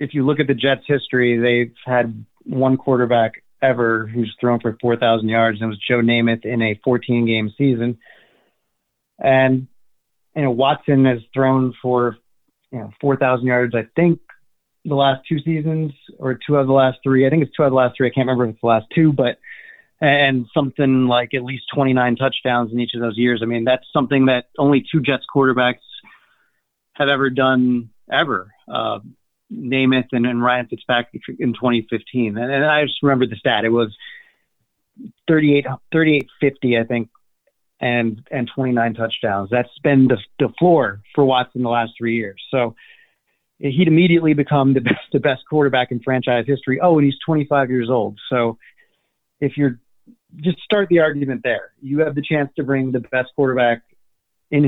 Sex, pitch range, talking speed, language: male, 120-140 Hz, 185 wpm, English